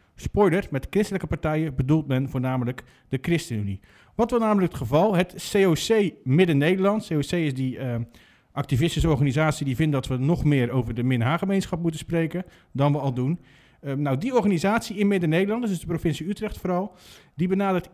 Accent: Dutch